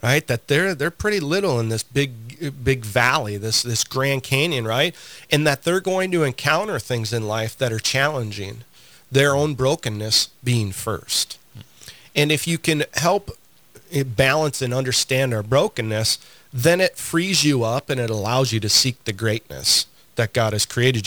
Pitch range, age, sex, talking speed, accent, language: 115-145 Hz, 40-59, male, 170 wpm, American, English